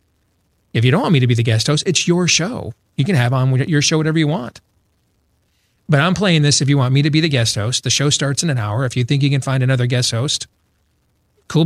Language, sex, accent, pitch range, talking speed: English, male, American, 105-145 Hz, 260 wpm